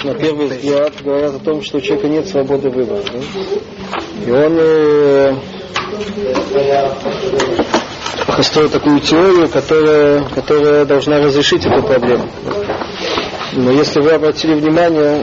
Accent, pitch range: native, 135-155 Hz